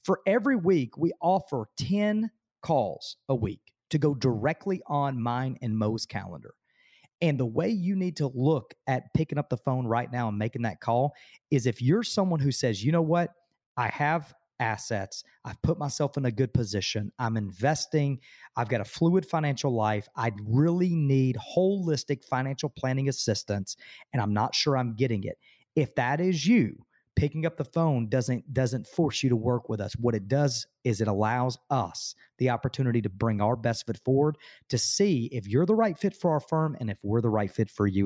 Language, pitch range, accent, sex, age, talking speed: English, 120-155 Hz, American, male, 40-59, 195 wpm